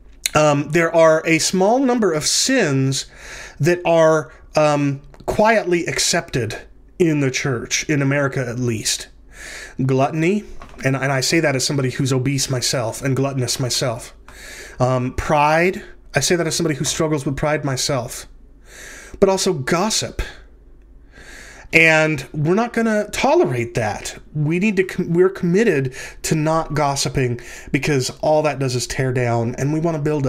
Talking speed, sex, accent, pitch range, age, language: 150 wpm, male, American, 130-170 Hz, 30-49, English